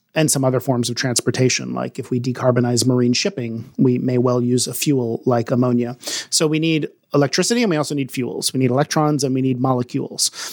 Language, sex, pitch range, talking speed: English, male, 125-145 Hz, 205 wpm